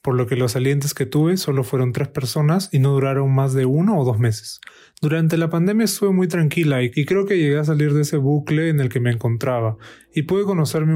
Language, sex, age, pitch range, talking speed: Spanish, male, 30-49, 135-165 Hz, 235 wpm